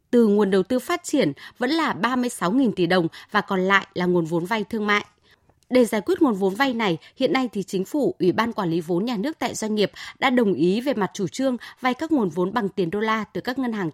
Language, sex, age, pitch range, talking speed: Vietnamese, female, 20-39, 190-265 Hz, 265 wpm